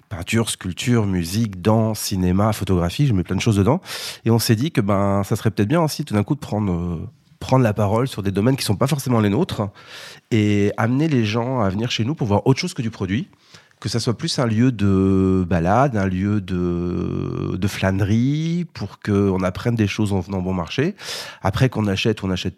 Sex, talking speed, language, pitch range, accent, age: male, 225 wpm, French, 100-125 Hz, French, 30-49